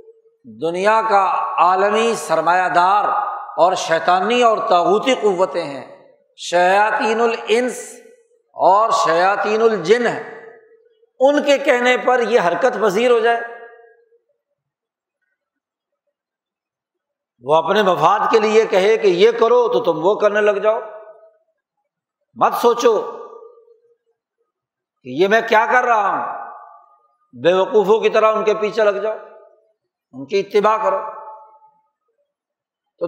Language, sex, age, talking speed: Urdu, male, 60-79, 115 wpm